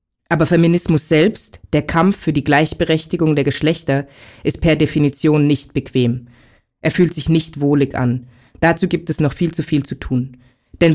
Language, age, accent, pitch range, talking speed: German, 20-39, German, 135-170 Hz, 170 wpm